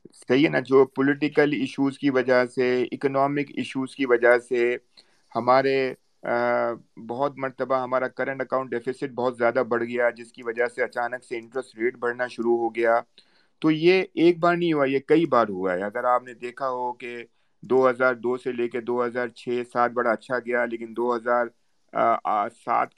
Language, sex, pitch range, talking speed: Urdu, male, 120-140 Hz, 170 wpm